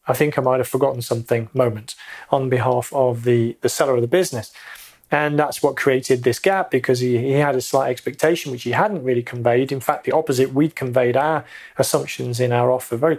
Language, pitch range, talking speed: English, 125-150 Hz, 215 wpm